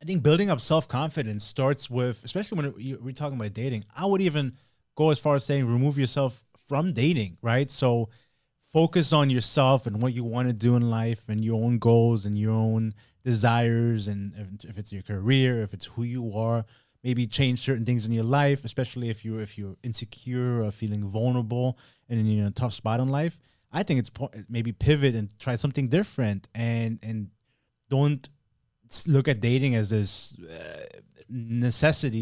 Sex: male